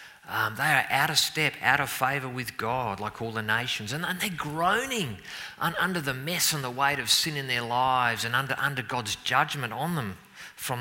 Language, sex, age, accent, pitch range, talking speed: English, male, 40-59, Australian, 115-180 Hz, 210 wpm